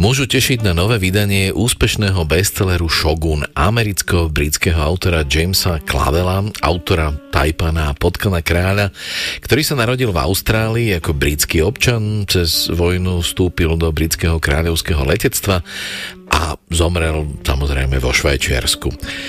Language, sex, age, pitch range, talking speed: Slovak, male, 40-59, 80-100 Hz, 115 wpm